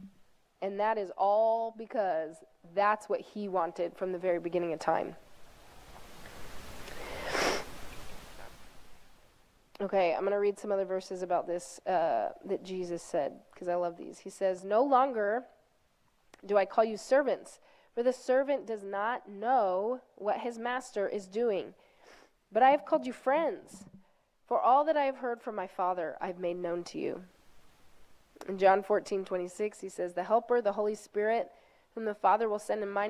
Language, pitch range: English, 190-245 Hz